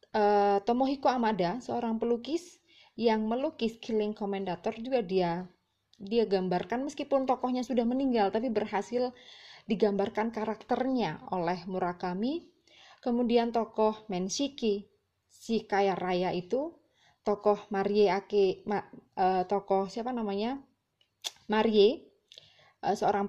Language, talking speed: English, 105 wpm